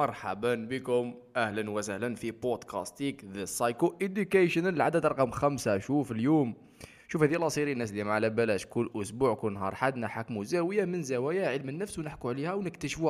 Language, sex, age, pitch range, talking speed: Arabic, male, 20-39, 110-160 Hz, 155 wpm